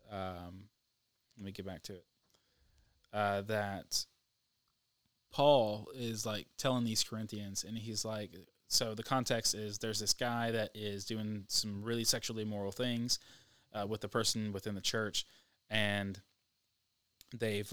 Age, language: 20-39, English